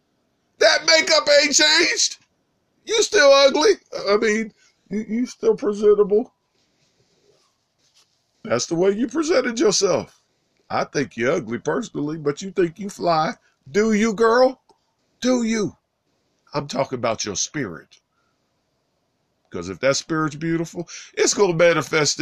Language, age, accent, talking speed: English, 40-59, American, 125 wpm